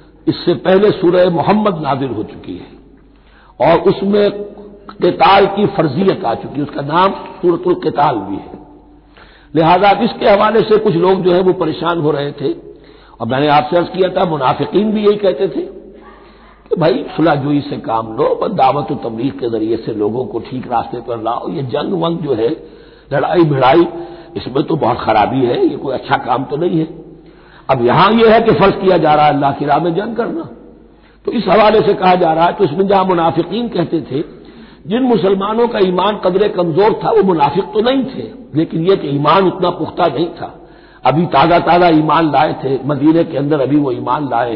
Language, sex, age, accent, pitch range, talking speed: Hindi, male, 60-79, native, 155-200 Hz, 195 wpm